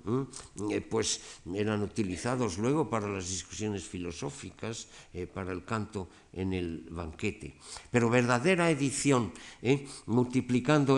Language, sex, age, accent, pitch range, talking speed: Spanish, male, 60-79, Spanish, 90-115 Hz, 110 wpm